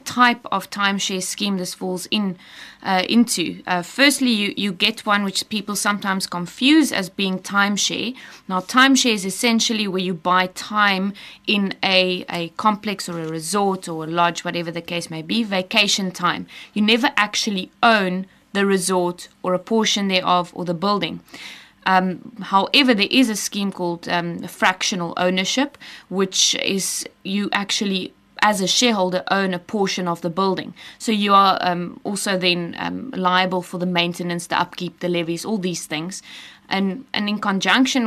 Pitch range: 180-210 Hz